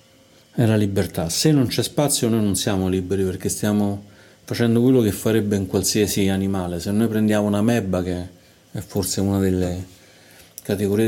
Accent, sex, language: native, male, Italian